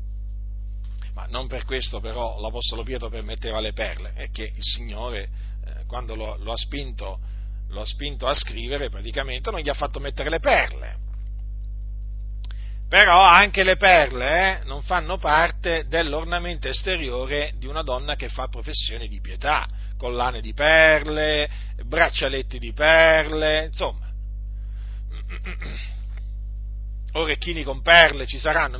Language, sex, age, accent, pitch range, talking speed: Italian, male, 40-59, native, 100-155 Hz, 130 wpm